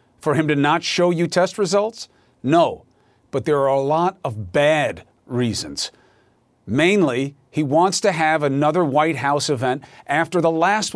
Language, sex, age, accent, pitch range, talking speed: English, male, 50-69, American, 145-205 Hz, 160 wpm